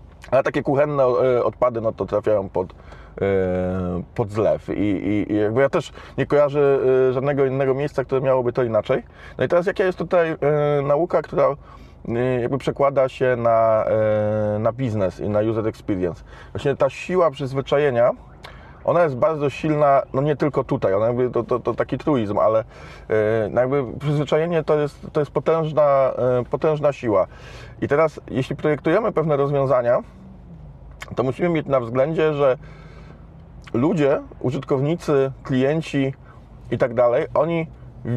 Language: Polish